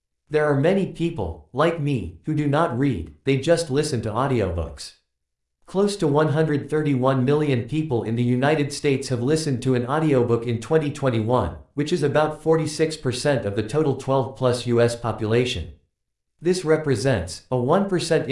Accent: American